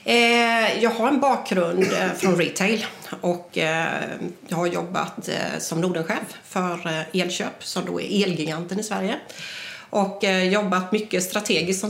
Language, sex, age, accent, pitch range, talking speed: English, female, 30-49, Swedish, 180-210 Hz, 125 wpm